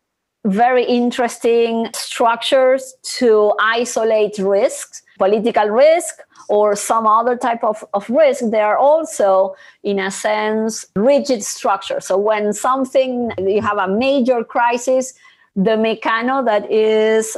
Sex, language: female, English